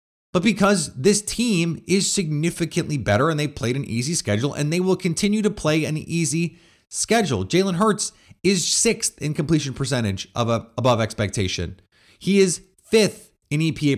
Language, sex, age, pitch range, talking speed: English, male, 30-49, 110-170 Hz, 160 wpm